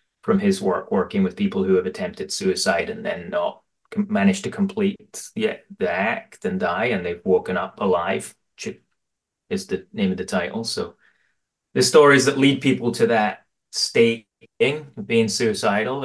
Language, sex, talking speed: English, male, 160 wpm